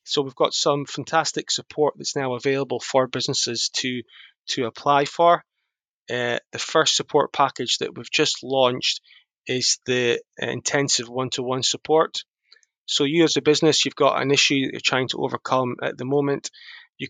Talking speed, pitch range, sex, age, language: 165 wpm, 125-145 Hz, male, 20-39, English